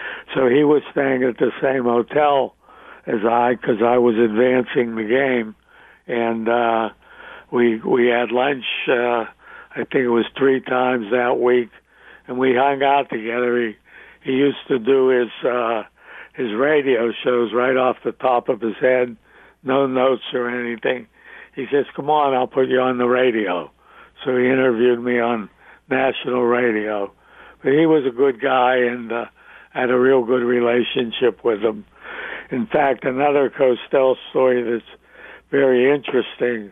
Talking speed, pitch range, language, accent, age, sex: 160 wpm, 120-135 Hz, English, American, 60-79, male